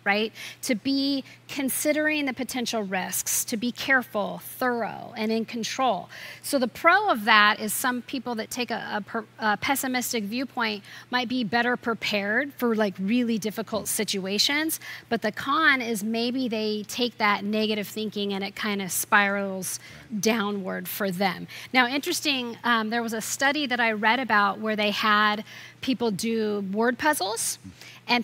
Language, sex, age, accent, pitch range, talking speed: English, female, 40-59, American, 215-255 Hz, 160 wpm